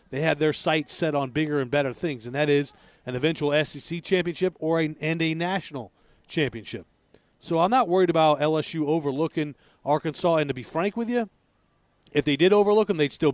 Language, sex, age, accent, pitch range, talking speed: English, male, 40-59, American, 140-175 Hz, 200 wpm